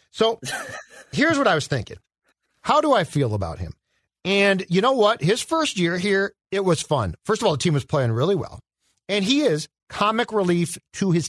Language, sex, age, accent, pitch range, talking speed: English, male, 50-69, American, 150-210 Hz, 205 wpm